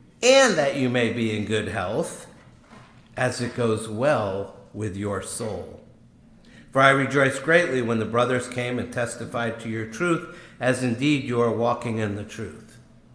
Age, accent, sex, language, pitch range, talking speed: 60-79, American, male, English, 115-140 Hz, 165 wpm